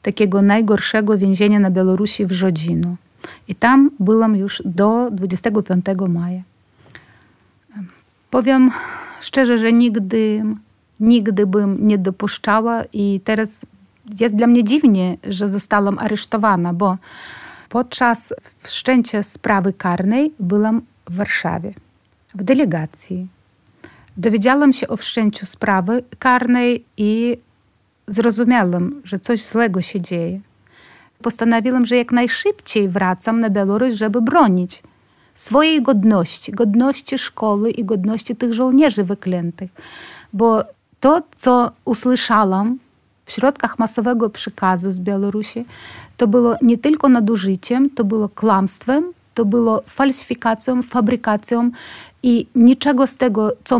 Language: Polish